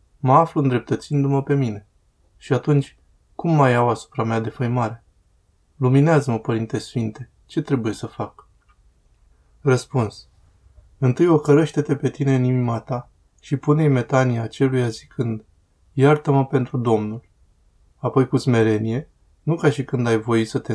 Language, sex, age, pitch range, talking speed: Romanian, male, 20-39, 110-135 Hz, 135 wpm